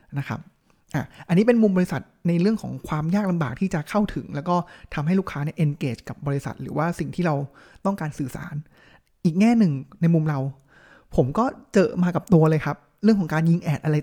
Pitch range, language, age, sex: 155-195 Hz, Thai, 20-39, male